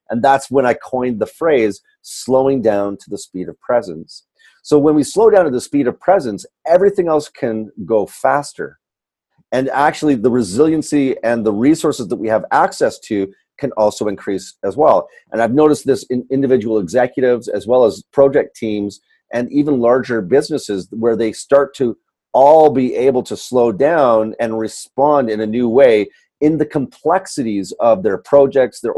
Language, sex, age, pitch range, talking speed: English, male, 40-59, 110-140 Hz, 175 wpm